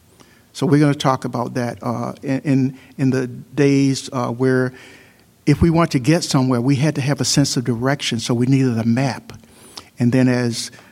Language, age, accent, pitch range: English, 60-79, American, 120-140 Hz